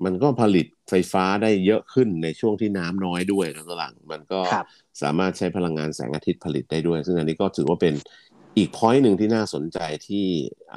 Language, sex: Thai, male